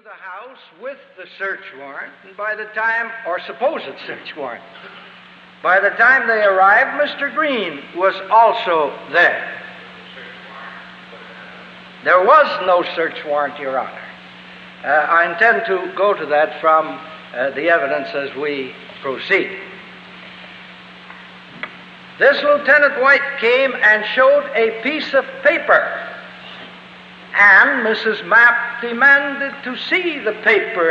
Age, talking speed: 60-79, 120 wpm